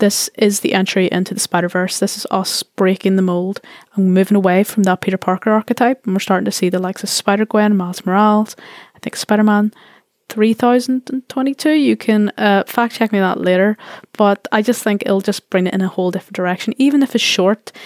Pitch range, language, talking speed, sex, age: 190-225 Hz, English, 210 wpm, female, 20-39